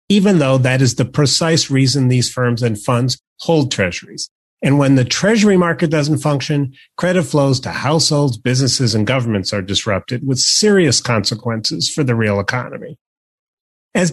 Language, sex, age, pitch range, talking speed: English, male, 40-59, 110-145 Hz, 155 wpm